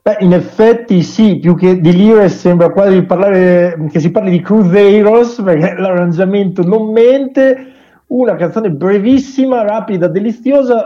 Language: Spanish